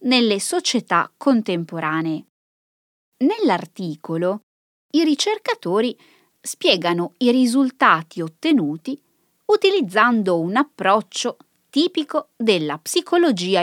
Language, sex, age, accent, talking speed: Italian, female, 20-39, native, 70 wpm